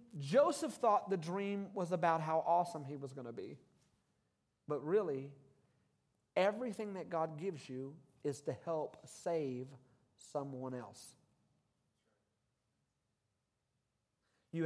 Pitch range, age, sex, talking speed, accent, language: 130-170 Hz, 40-59, male, 110 wpm, American, English